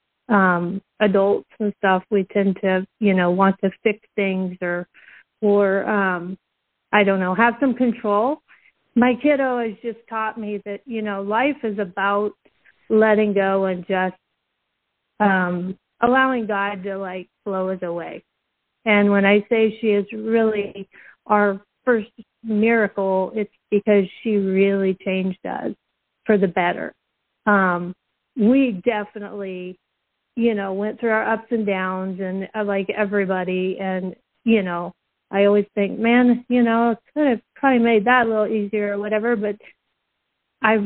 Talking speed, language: 150 wpm, English